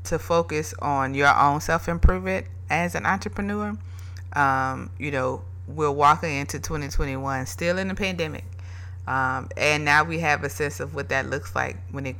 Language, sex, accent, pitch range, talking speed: English, female, American, 90-145 Hz, 165 wpm